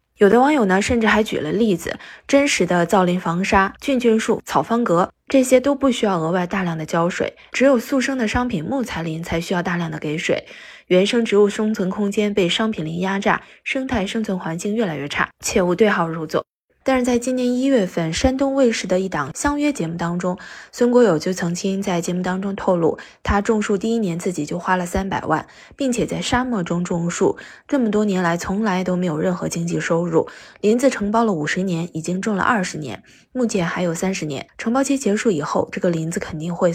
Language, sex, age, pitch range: Chinese, female, 20-39, 175-230 Hz